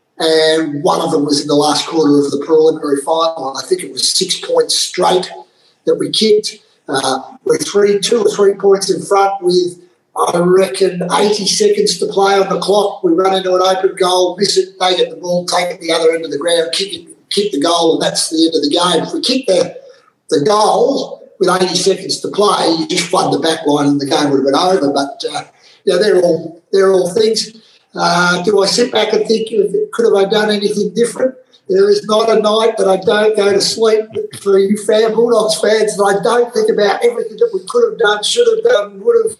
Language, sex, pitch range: English, male, 175-245 Hz